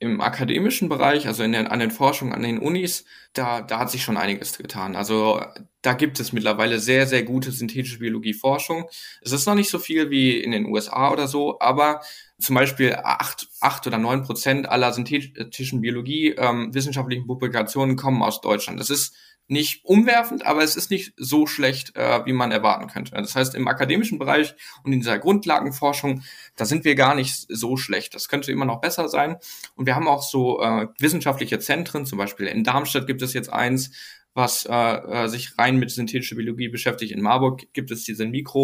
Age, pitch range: 10-29, 115-140 Hz